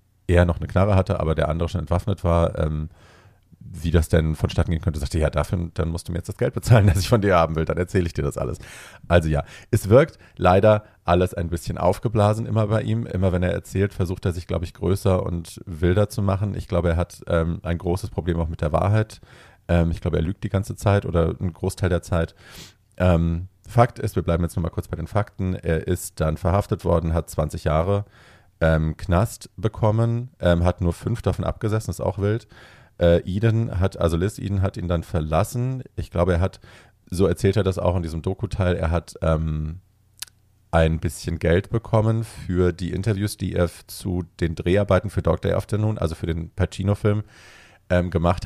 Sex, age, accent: male, 40-59, German